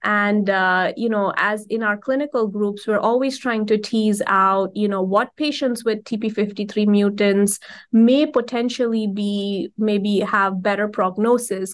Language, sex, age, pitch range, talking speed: English, female, 20-39, 210-245 Hz, 150 wpm